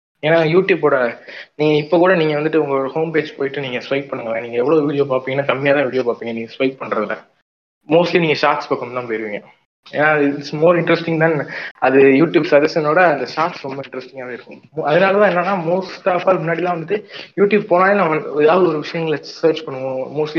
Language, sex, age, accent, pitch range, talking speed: Tamil, male, 20-39, native, 140-170 Hz, 180 wpm